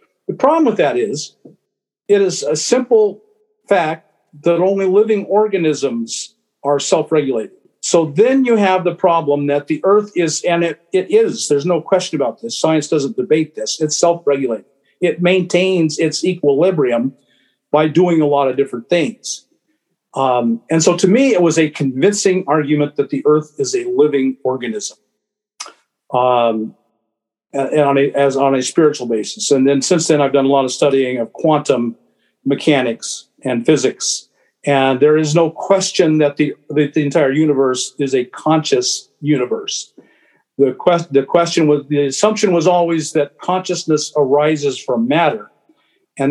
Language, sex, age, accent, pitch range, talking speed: English, male, 50-69, American, 140-185 Hz, 160 wpm